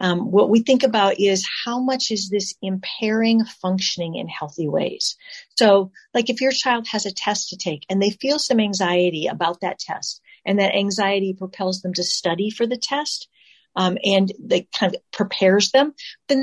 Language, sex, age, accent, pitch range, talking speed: English, female, 40-59, American, 180-230 Hz, 185 wpm